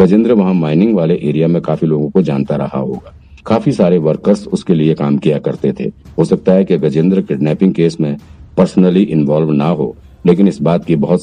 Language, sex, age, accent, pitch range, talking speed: Hindi, male, 50-69, native, 75-90 Hz, 205 wpm